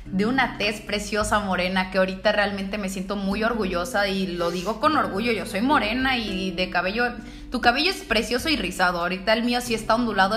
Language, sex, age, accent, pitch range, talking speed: Spanish, female, 20-39, Mexican, 190-235 Hz, 205 wpm